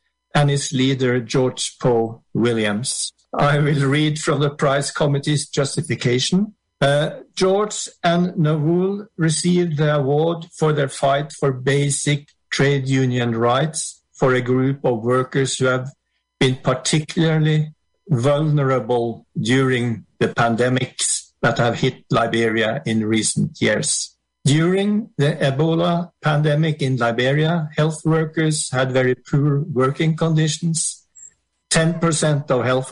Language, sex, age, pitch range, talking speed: English, male, 50-69, 130-155 Hz, 120 wpm